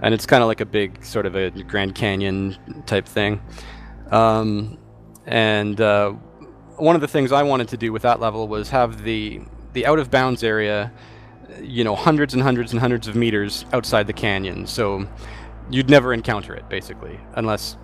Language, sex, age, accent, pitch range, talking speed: English, male, 30-49, American, 105-120 Hz, 185 wpm